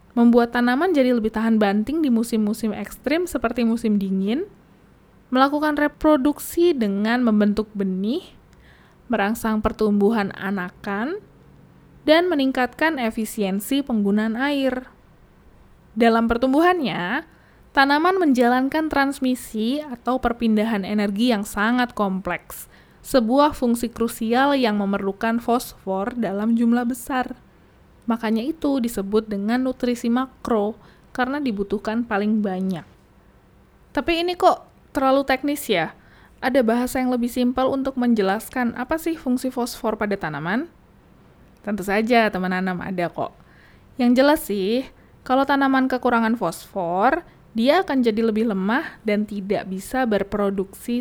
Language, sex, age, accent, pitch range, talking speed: Indonesian, female, 20-39, native, 210-260 Hz, 110 wpm